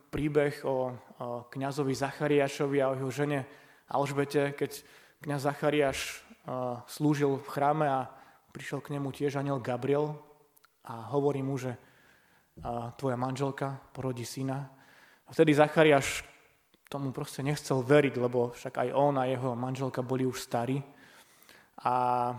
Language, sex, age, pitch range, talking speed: Slovak, male, 20-39, 130-150 Hz, 135 wpm